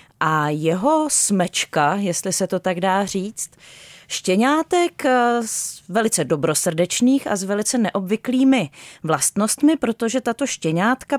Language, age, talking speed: Czech, 30-49, 115 wpm